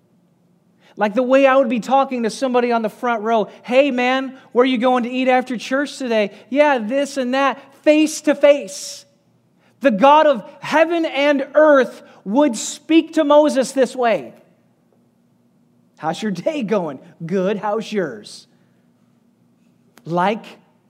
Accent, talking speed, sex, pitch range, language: American, 145 wpm, male, 180-255 Hz, English